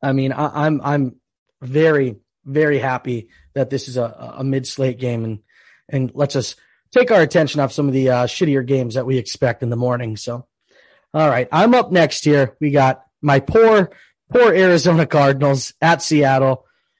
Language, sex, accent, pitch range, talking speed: English, male, American, 130-160 Hz, 180 wpm